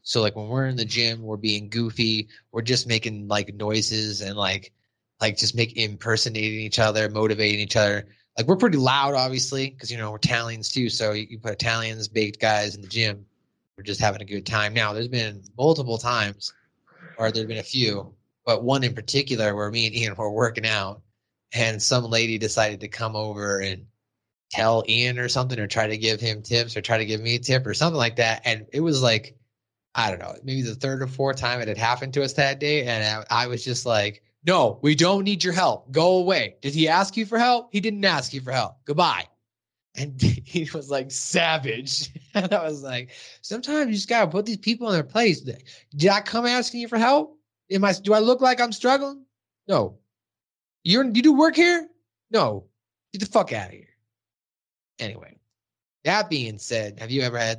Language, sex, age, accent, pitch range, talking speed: English, male, 20-39, American, 110-145 Hz, 215 wpm